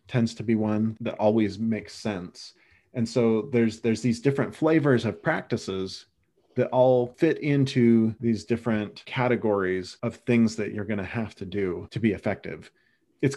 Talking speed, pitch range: 160 wpm, 105-130 Hz